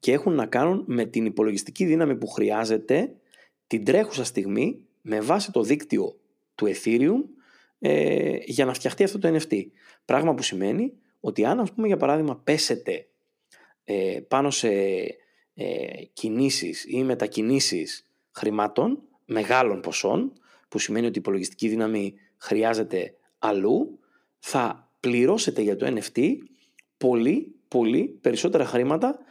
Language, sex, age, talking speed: Greek, male, 30-49, 125 wpm